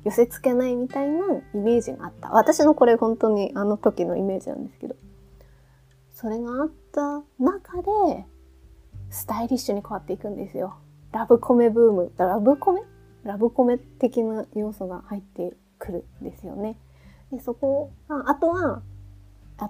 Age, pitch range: 20-39, 185-255 Hz